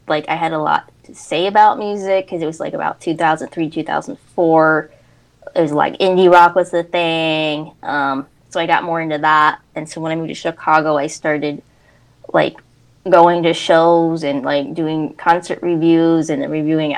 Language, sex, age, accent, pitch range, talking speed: English, female, 20-39, American, 155-175 Hz, 185 wpm